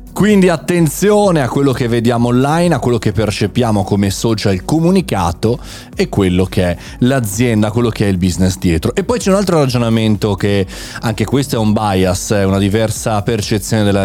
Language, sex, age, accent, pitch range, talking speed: Italian, male, 30-49, native, 100-145 Hz, 180 wpm